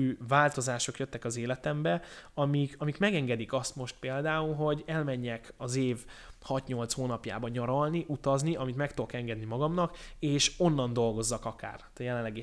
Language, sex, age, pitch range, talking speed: Hungarian, male, 20-39, 120-150 Hz, 140 wpm